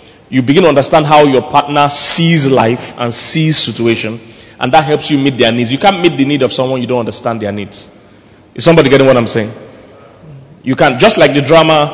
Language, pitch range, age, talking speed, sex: English, 115-145 Hz, 30-49, 215 wpm, male